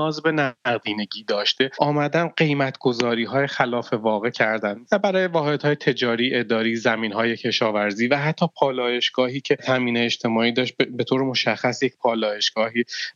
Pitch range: 115-135 Hz